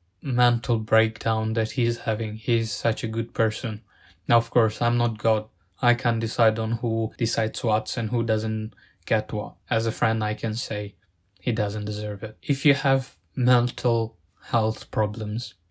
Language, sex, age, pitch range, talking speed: English, male, 20-39, 110-120 Hz, 175 wpm